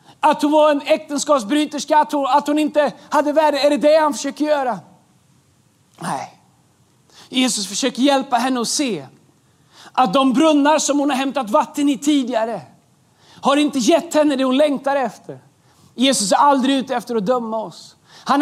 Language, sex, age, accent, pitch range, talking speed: Swedish, male, 30-49, native, 250-295 Hz, 170 wpm